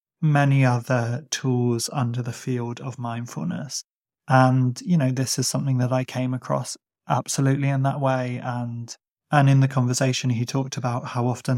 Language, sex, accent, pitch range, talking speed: English, male, British, 125-135 Hz, 165 wpm